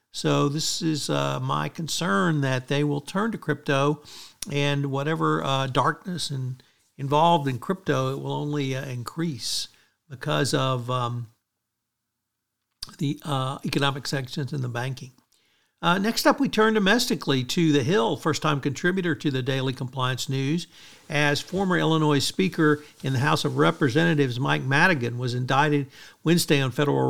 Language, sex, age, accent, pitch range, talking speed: English, male, 60-79, American, 130-155 Hz, 150 wpm